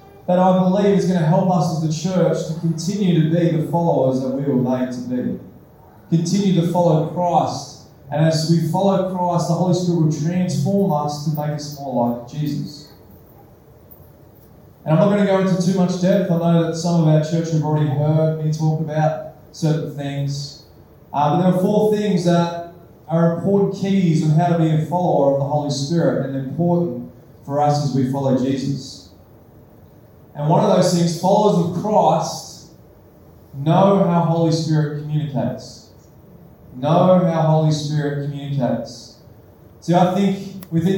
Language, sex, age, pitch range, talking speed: English, male, 20-39, 145-175 Hz, 175 wpm